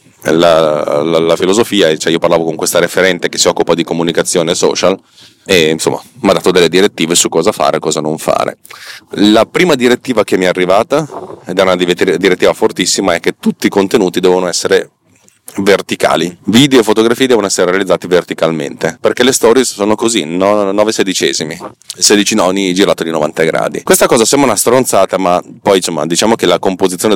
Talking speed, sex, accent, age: 180 wpm, male, native, 30-49